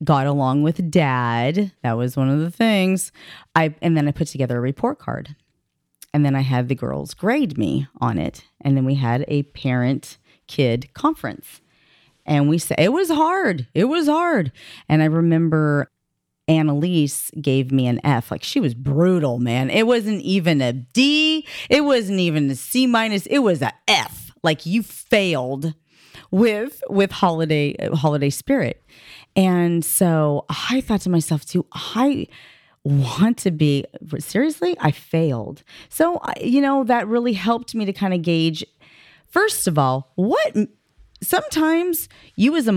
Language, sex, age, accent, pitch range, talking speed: English, female, 30-49, American, 145-245 Hz, 160 wpm